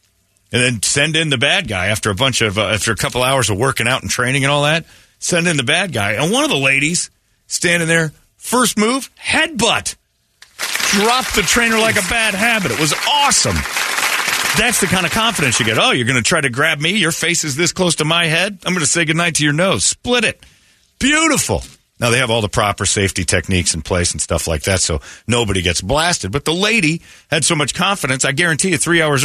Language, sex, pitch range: English, male, 100-160 Hz